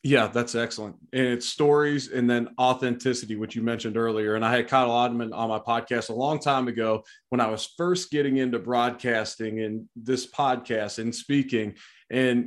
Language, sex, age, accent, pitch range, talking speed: English, male, 30-49, American, 110-130 Hz, 185 wpm